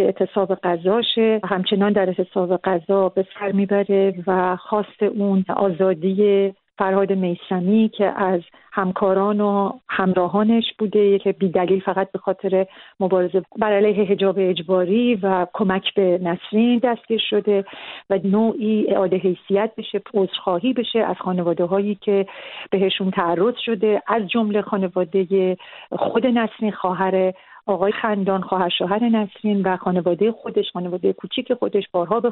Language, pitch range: Persian, 190-220 Hz